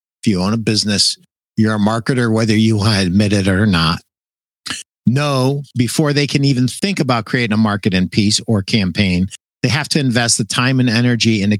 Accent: American